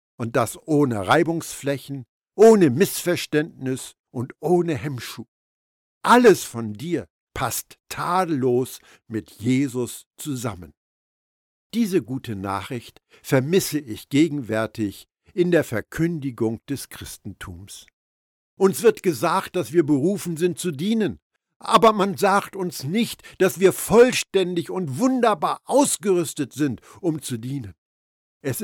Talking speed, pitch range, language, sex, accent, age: 110 wpm, 115-180 Hz, German, male, German, 60-79